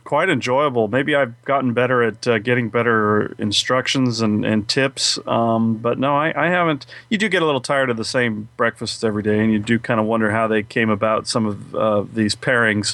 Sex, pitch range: male, 115-140 Hz